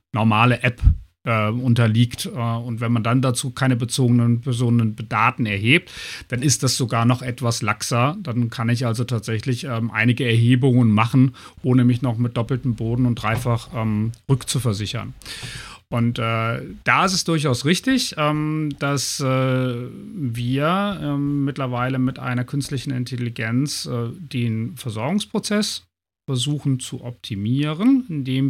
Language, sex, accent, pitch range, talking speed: German, male, German, 120-145 Hz, 135 wpm